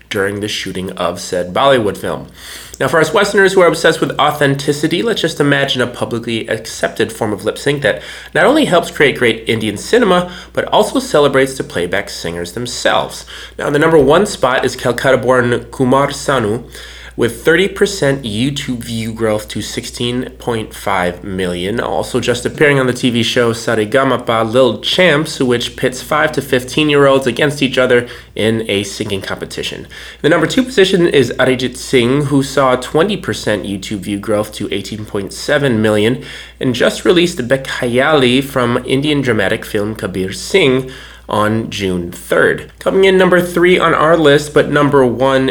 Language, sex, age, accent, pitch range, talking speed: English, male, 30-49, American, 110-140 Hz, 165 wpm